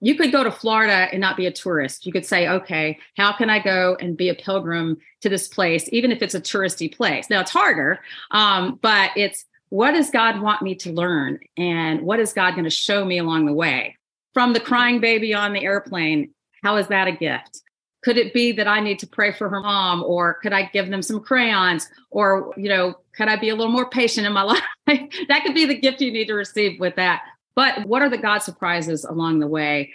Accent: American